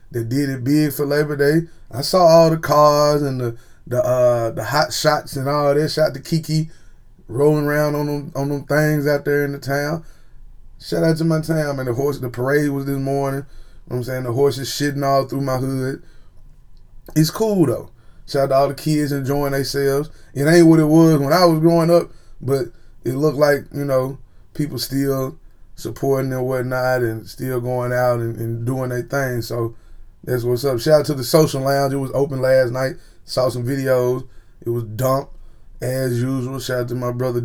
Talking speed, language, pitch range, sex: 210 wpm, English, 120-145 Hz, male